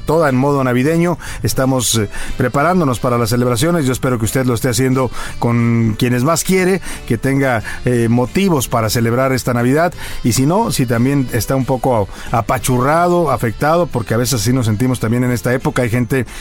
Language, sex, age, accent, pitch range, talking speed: Spanish, male, 40-59, Mexican, 115-140 Hz, 180 wpm